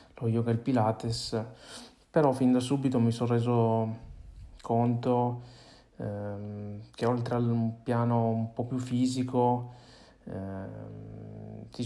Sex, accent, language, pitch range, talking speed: male, native, Italian, 105-120 Hz, 110 wpm